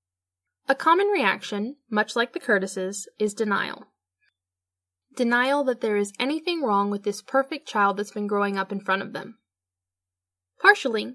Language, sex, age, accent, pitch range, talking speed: English, female, 10-29, American, 195-265 Hz, 150 wpm